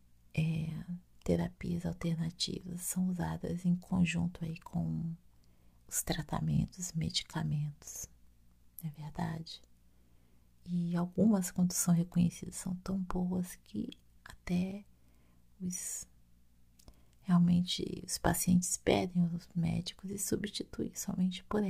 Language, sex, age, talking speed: Portuguese, female, 40-59, 95 wpm